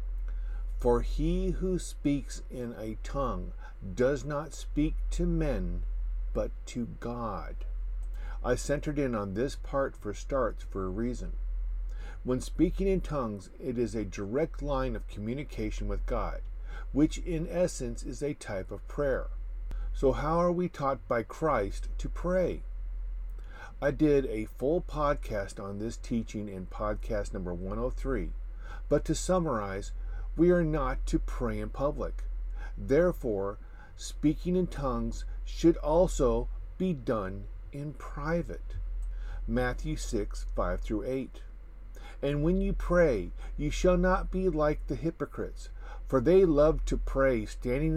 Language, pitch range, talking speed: English, 100-155 Hz, 140 wpm